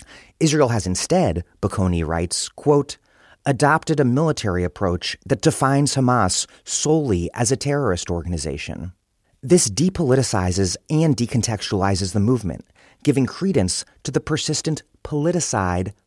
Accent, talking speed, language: American, 110 wpm, English